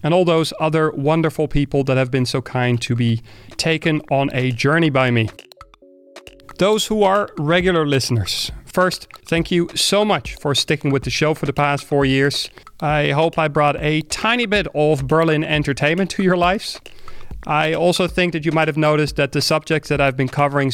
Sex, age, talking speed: male, 30-49, 195 wpm